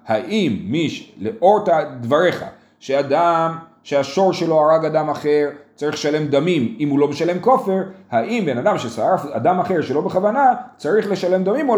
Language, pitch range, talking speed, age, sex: Hebrew, 120-190 Hz, 145 wpm, 30-49, male